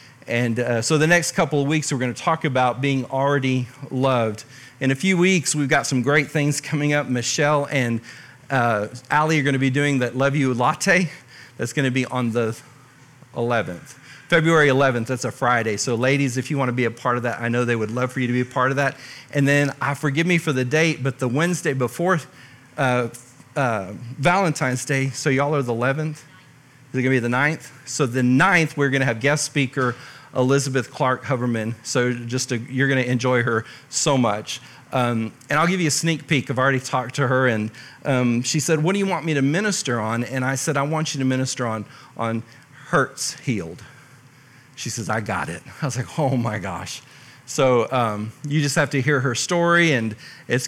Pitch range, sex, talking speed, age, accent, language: 125-145 Hz, male, 215 wpm, 40-59, American, English